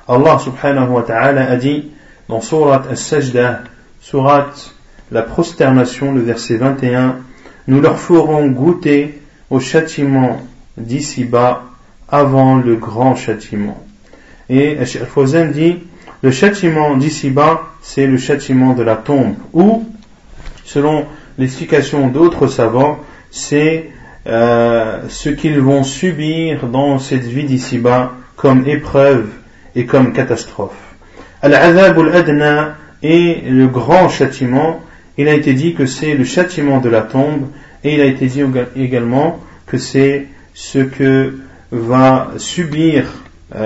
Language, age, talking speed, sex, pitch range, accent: French, 40-59, 120 wpm, male, 125-145 Hz, French